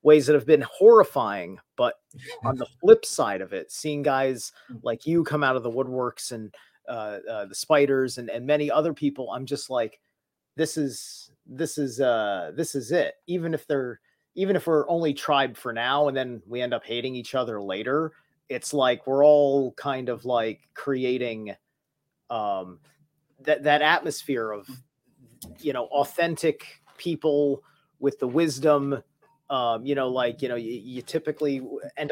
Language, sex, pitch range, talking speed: English, male, 130-155 Hz, 170 wpm